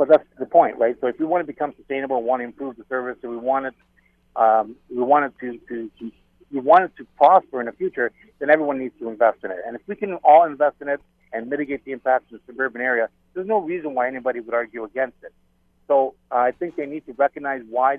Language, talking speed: English, 255 wpm